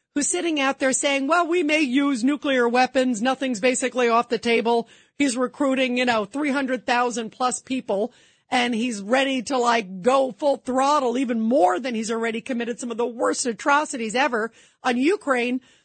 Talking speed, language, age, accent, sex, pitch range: 170 wpm, English, 40-59, American, female, 245-315 Hz